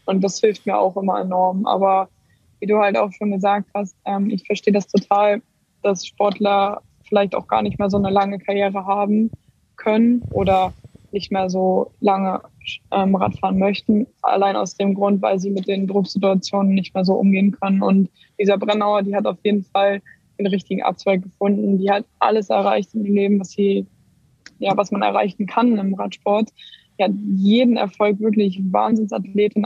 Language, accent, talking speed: German, German, 170 wpm